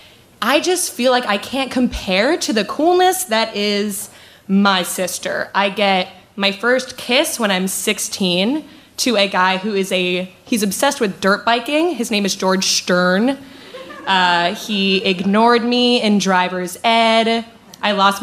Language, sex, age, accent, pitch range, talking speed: English, female, 20-39, American, 185-230 Hz, 155 wpm